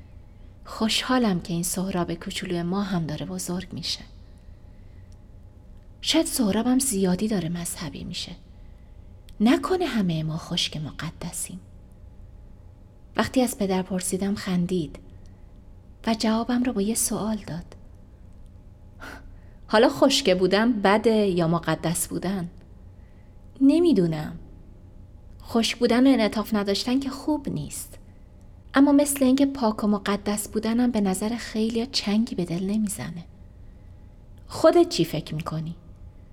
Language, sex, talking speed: Persian, female, 110 wpm